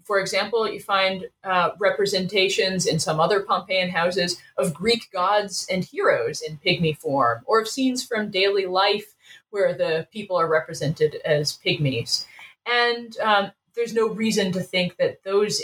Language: English